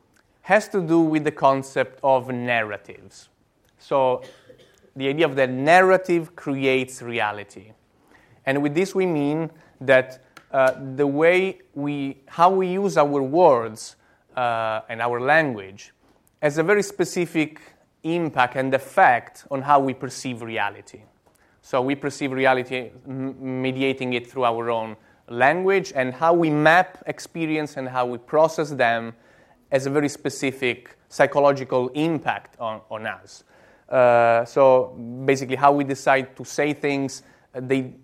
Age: 20-39